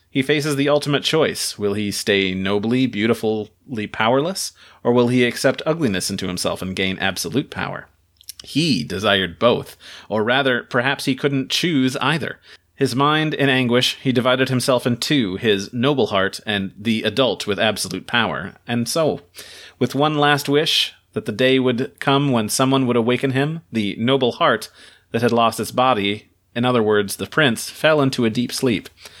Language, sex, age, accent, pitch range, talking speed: English, male, 30-49, American, 110-135 Hz, 175 wpm